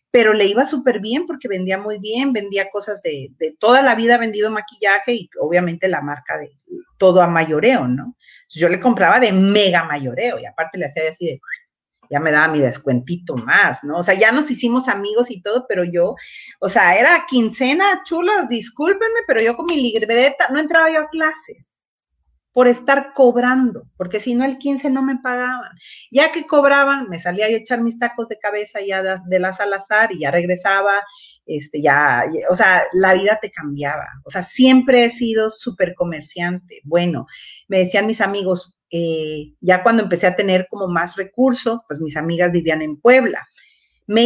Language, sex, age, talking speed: Spanish, female, 40-59, 190 wpm